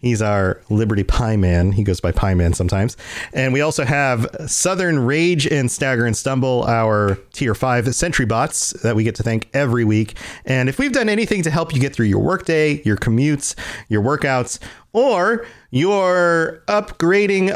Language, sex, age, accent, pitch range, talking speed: English, male, 30-49, American, 110-170 Hz, 180 wpm